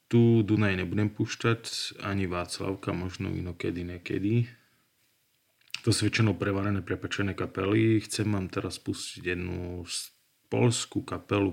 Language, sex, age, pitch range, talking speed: Slovak, male, 30-49, 90-105 Hz, 115 wpm